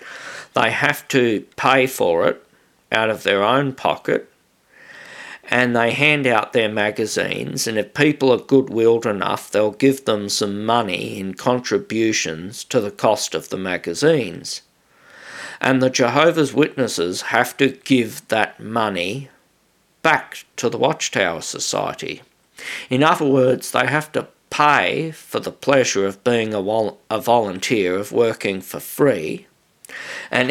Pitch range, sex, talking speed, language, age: 100-135 Hz, male, 140 wpm, English, 50-69